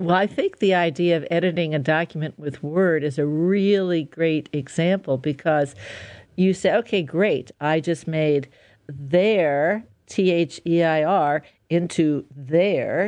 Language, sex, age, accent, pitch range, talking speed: English, female, 60-79, American, 160-205 Hz, 130 wpm